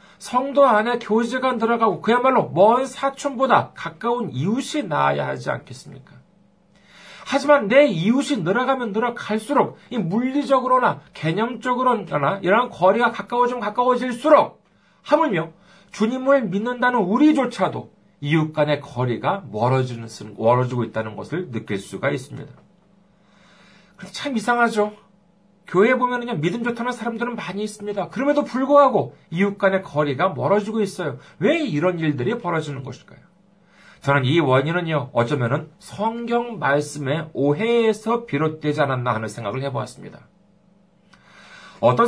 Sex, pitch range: male, 145-235 Hz